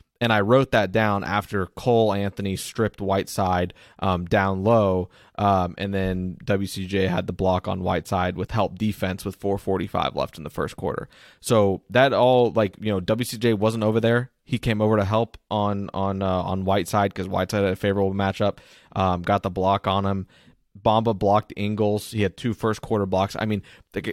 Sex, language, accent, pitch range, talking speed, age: male, English, American, 95-110 Hz, 190 wpm, 20-39